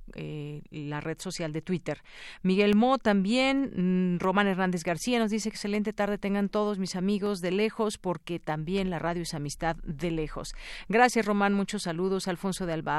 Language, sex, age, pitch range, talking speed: Spanish, female, 40-59, 165-205 Hz, 170 wpm